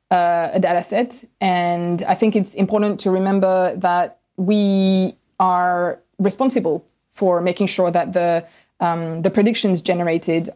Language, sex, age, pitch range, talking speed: English, female, 20-39, 180-215 Hz, 135 wpm